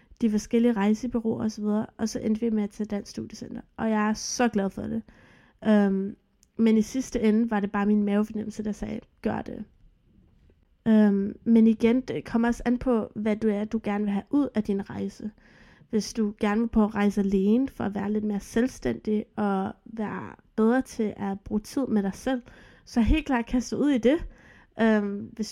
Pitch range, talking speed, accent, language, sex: 210-235 Hz, 205 wpm, native, Danish, female